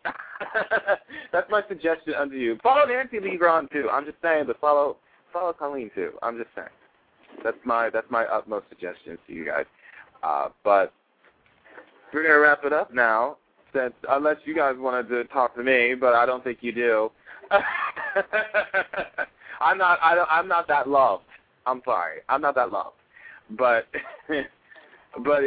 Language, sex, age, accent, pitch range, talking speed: English, male, 20-39, American, 110-145 Hz, 160 wpm